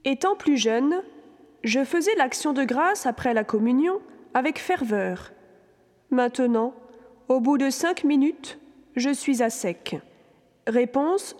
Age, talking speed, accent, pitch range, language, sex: 30-49, 125 wpm, French, 245-315 Hz, French, female